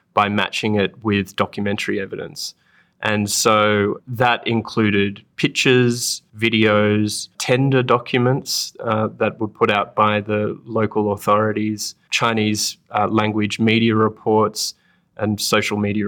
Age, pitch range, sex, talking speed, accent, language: 20-39, 105-115 Hz, male, 115 wpm, Australian, English